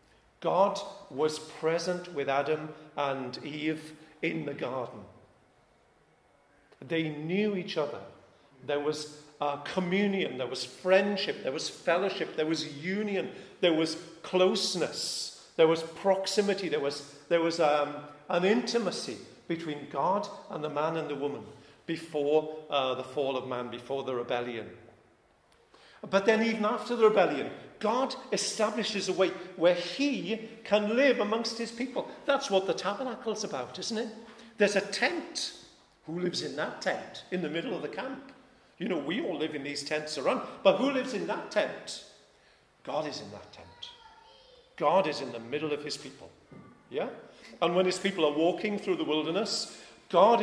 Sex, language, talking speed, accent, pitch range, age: male, English, 160 wpm, British, 145-200 Hz, 50-69